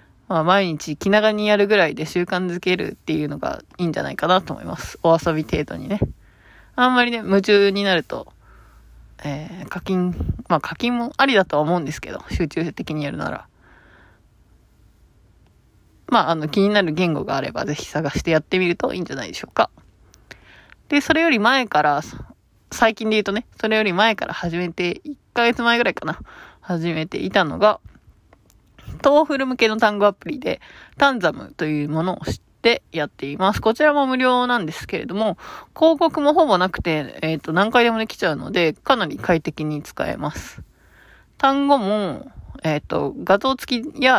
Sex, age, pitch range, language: female, 20-39, 160-225 Hz, Japanese